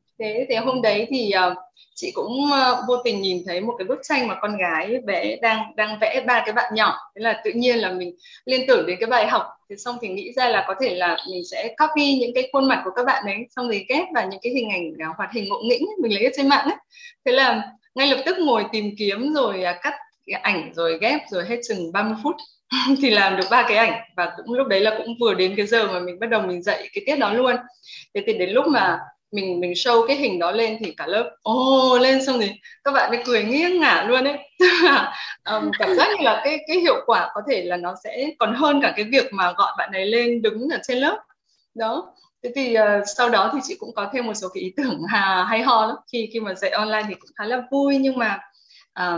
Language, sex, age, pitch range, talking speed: Vietnamese, female, 20-39, 200-270 Hz, 260 wpm